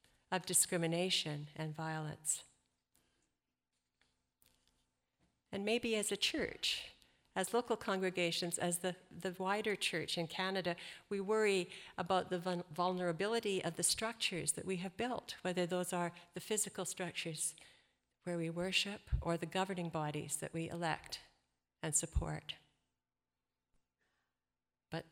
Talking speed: 120 wpm